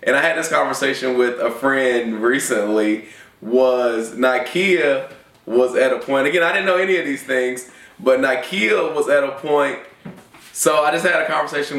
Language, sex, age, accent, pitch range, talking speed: English, male, 20-39, American, 115-140 Hz, 180 wpm